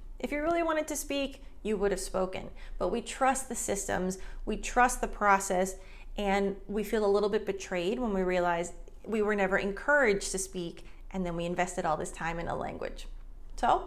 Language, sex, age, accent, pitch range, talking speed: English, female, 30-49, American, 195-275 Hz, 200 wpm